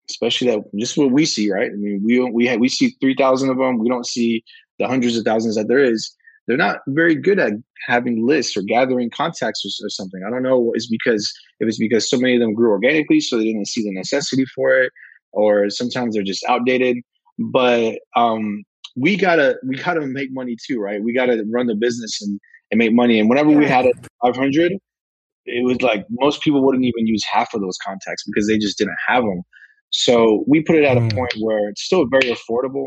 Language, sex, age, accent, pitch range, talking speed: English, male, 20-39, American, 110-130 Hz, 230 wpm